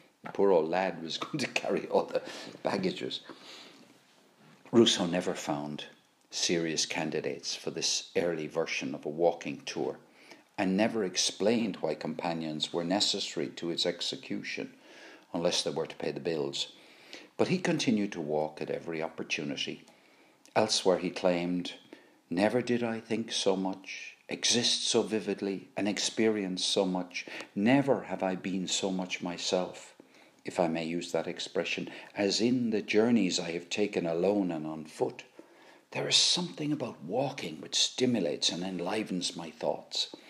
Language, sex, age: English, male, 50-69